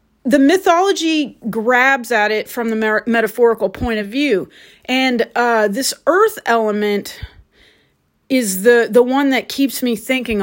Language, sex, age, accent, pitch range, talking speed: English, female, 30-49, American, 200-245 Hz, 145 wpm